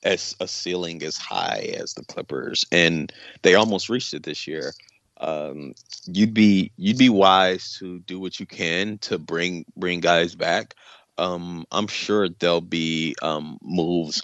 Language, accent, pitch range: English, American, 85-105 Hz